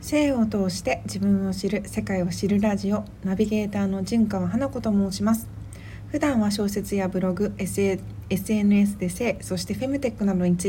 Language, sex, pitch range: Japanese, female, 170-215 Hz